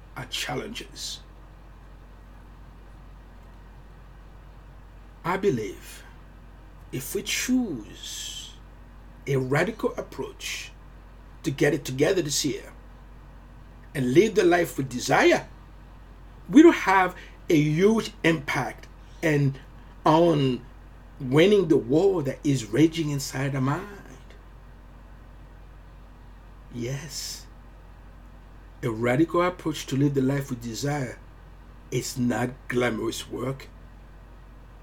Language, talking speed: English, 90 wpm